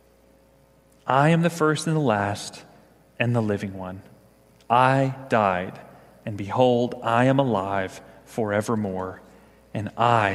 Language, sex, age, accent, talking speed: English, male, 30-49, American, 120 wpm